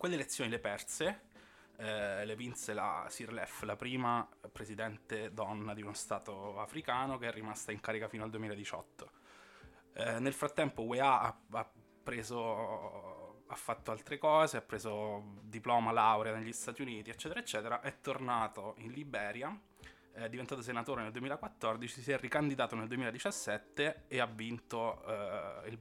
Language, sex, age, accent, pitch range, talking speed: Italian, male, 20-39, native, 110-130 Hz, 145 wpm